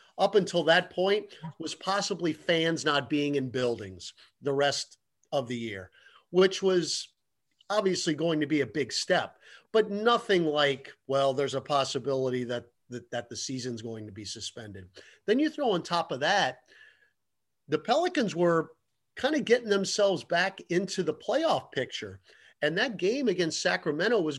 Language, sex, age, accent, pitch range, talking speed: English, male, 50-69, American, 135-185 Hz, 160 wpm